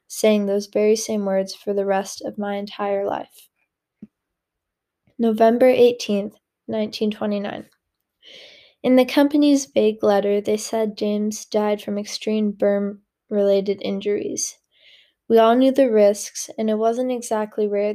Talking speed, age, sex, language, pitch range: 125 wpm, 20-39, female, English, 205-235 Hz